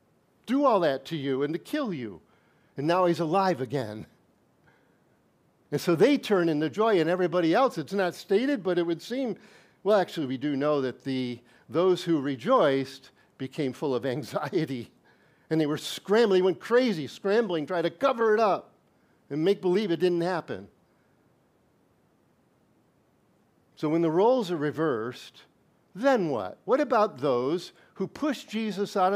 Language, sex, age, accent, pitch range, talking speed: English, male, 50-69, American, 140-195 Hz, 160 wpm